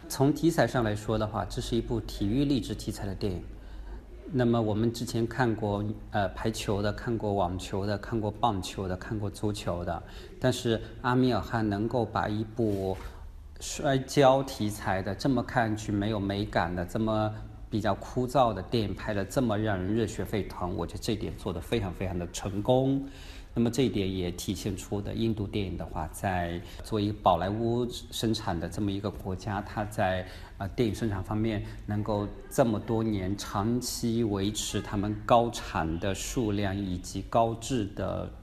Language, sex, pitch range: Chinese, male, 95-115 Hz